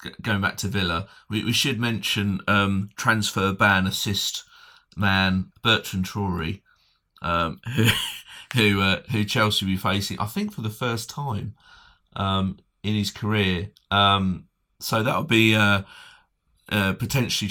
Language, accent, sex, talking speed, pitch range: English, British, male, 145 wpm, 95-120 Hz